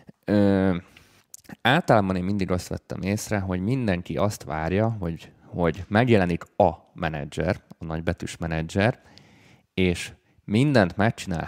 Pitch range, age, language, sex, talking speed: 85-105 Hz, 30-49, Hungarian, male, 110 wpm